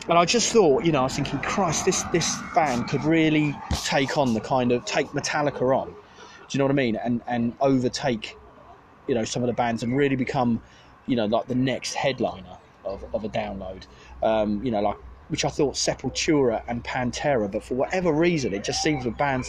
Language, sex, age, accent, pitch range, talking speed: English, male, 30-49, British, 120-150 Hz, 215 wpm